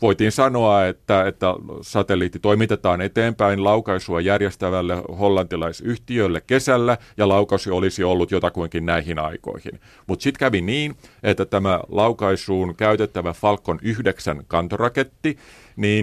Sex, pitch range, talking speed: male, 90-110 Hz, 110 wpm